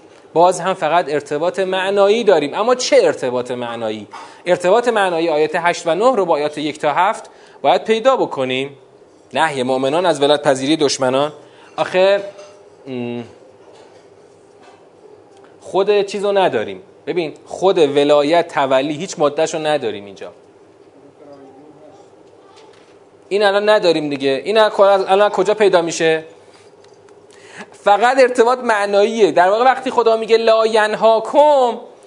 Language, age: Persian, 30-49